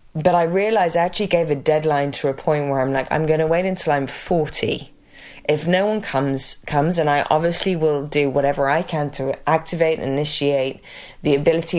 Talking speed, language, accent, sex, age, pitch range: 200 wpm, English, British, female, 20-39, 140-170 Hz